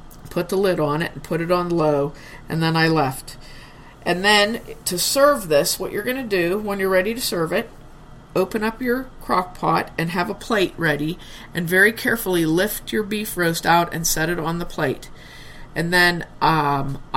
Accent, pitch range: American, 155-190 Hz